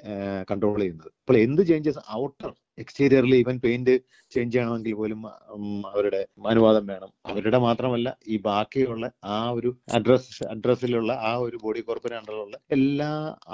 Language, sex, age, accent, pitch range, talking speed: Malayalam, male, 30-49, native, 110-145 Hz, 120 wpm